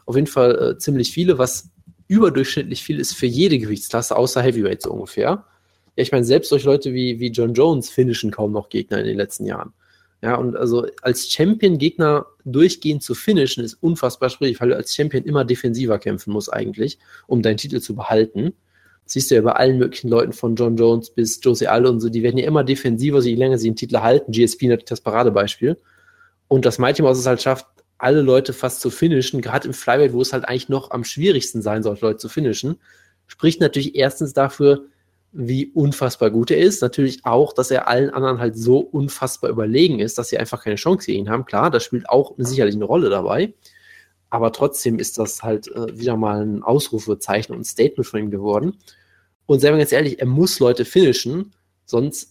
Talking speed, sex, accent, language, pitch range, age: 205 wpm, male, German, German, 115-140 Hz, 20-39